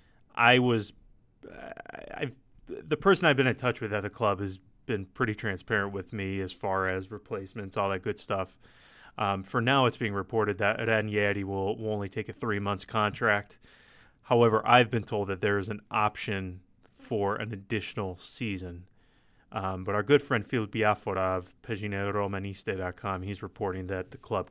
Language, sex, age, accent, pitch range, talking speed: English, male, 20-39, American, 100-115 Hz, 180 wpm